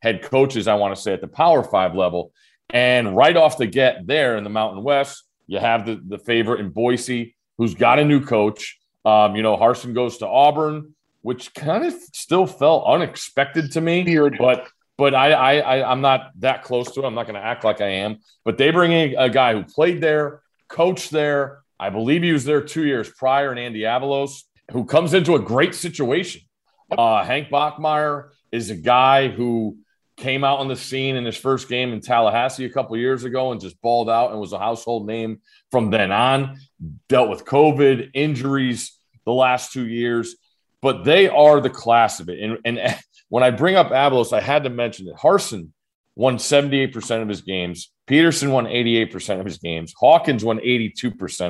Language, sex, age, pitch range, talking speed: English, male, 40-59, 115-140 Hz, 200 wpm